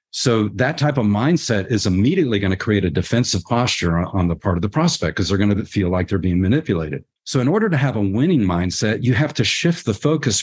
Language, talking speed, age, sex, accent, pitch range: English, 240 wpm, 50-69, male, American, 95-130 Hz